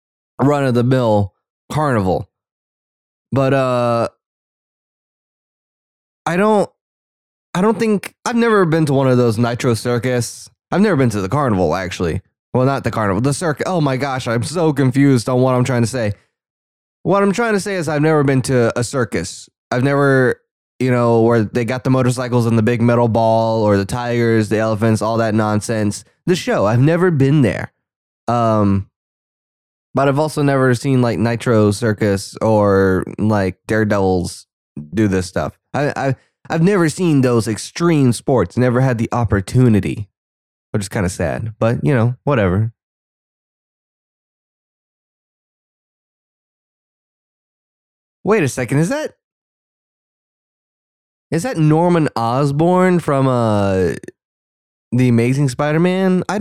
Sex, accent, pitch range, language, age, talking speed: male, American, 105-145 Hz, English, 20-39, 145 wpm